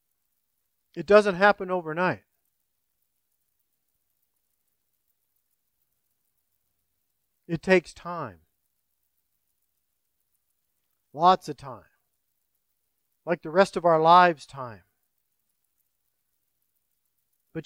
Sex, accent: male, American